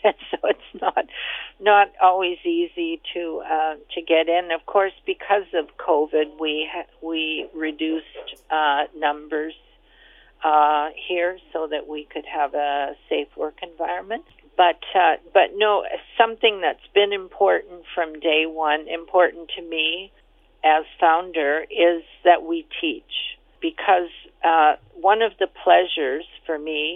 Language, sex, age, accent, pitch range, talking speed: English, female, 50-69, American, 150-185 Hz, 135 wpm